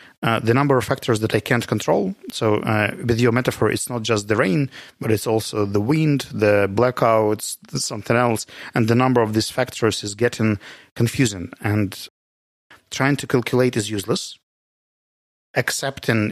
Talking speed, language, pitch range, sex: 160 wpm, Russian, 105-125 Hz, male